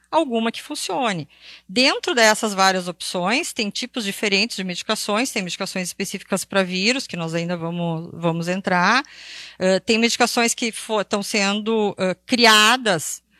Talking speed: 130 wpm